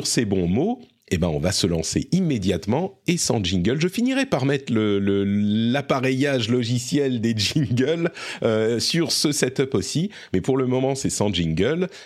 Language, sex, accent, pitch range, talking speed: French, male, French, 100-165 Hz, 175 wpm